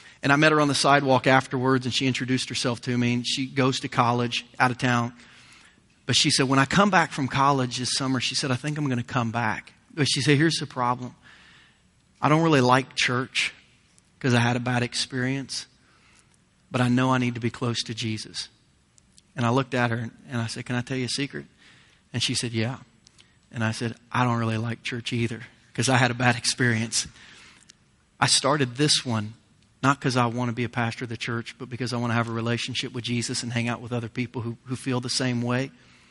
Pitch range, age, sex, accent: 120-135 Hz, 30-49, male, American